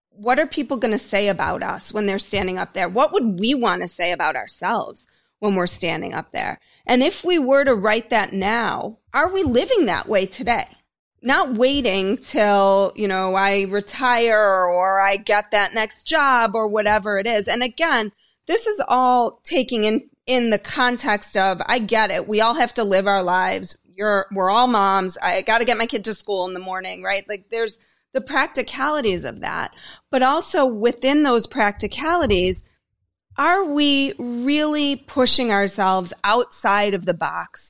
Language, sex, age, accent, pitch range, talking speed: English, female, 30-49, American, 190-250 Hz, 180 wpm